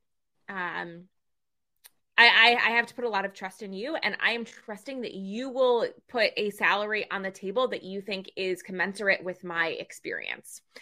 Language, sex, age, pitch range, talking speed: English, female, 20-39, 190-255 Hz, 190 wpm